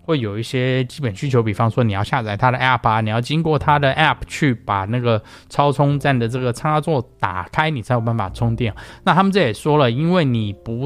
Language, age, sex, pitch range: Chinese, 20-39, male, 110-155 Hz